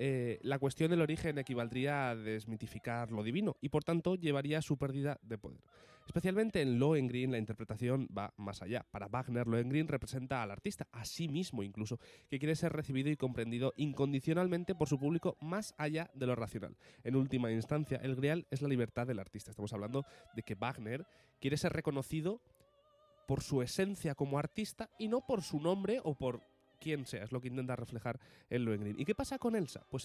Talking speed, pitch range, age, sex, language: 195 wpm, 120-155 Hz, 20-39, male, Spanish